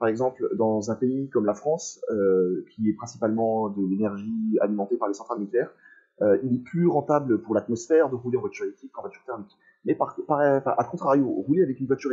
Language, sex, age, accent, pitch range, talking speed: French, male, 30-49, French, 105-150 Hz, 220 wpm